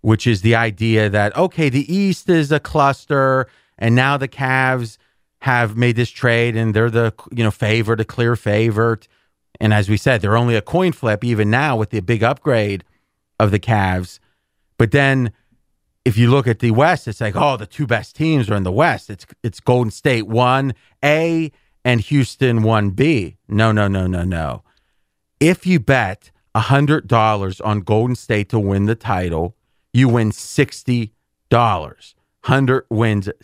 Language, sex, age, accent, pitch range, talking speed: English, male, 30-49, American, 105-145 Hz, 170 wpm